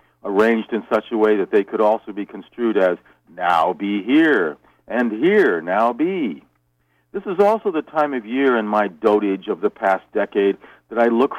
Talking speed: 190 wpm